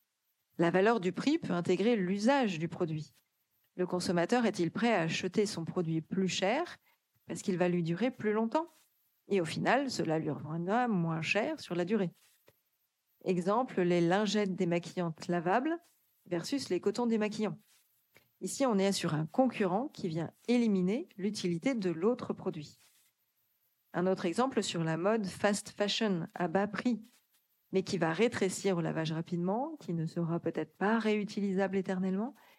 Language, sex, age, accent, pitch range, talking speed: French, female, 40-59, French, 180-225 Hz, 155 wpm